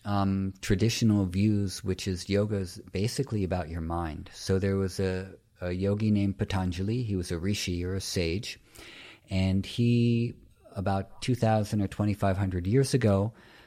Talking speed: 150 wpm